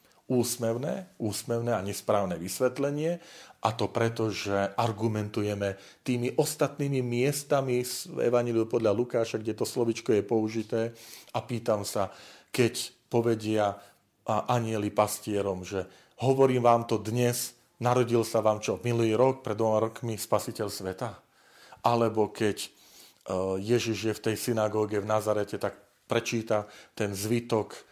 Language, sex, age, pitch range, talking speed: Slovak, male, 40-59, 105-120 Hz, 125 wpm